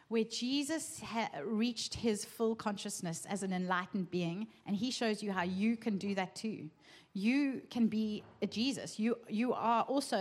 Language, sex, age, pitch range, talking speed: English, female, 30-49, 205-255 Hz, 175 wpm